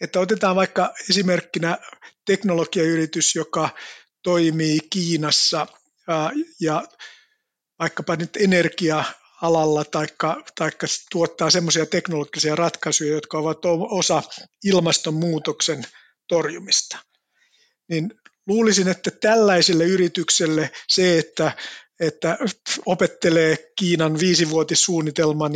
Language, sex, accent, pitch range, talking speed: Finnish, male, native, 160-185 Hz, 80 wpm